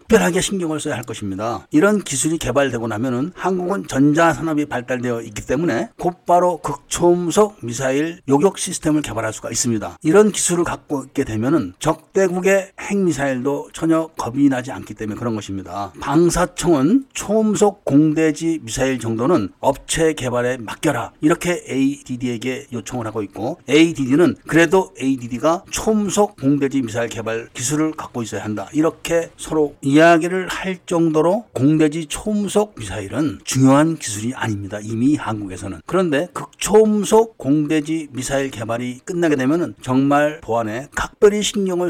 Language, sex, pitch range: Korean, male, 120-165 Hz